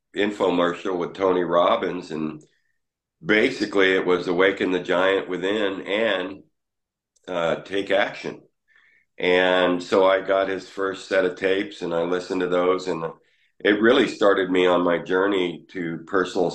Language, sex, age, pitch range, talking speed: English, male, 50-69, 85-95 Hz, 145 wpm